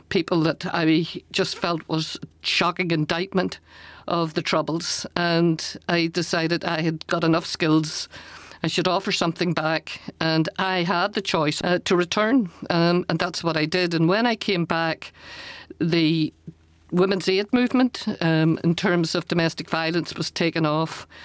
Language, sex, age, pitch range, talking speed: English, female, 50-69, 160-175 Hz, 160 wpm